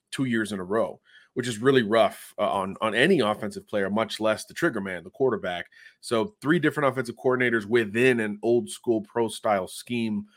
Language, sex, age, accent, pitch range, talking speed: English, male, 30-49, American, 110-130 Hz, 195 wpm